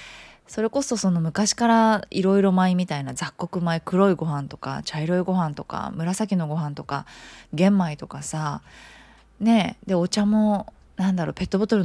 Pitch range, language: 150-225 Hz, Japanese